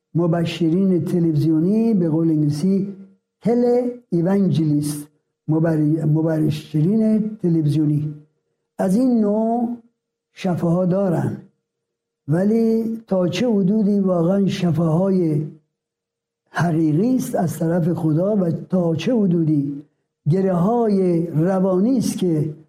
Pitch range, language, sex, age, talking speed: 160-215 Hz, Persian, male, 60-79, 85 wpm